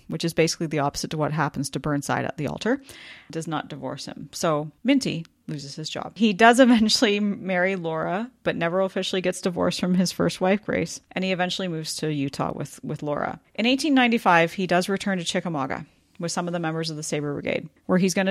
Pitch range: 155-185 Hz